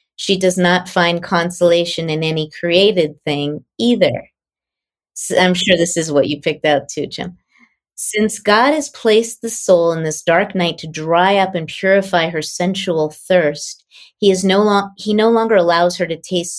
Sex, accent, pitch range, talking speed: female, American, 155-195 Hz, 165 wpm